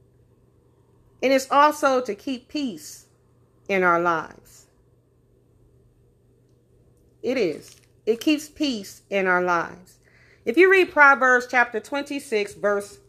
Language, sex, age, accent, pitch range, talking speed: English, female, 40-59, American, 175-285 Hz, 110 wpm